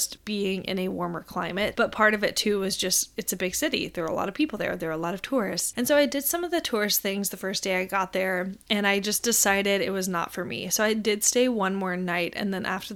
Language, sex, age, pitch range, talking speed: English, female, 20-39, 185-225 Hz, 290 wpm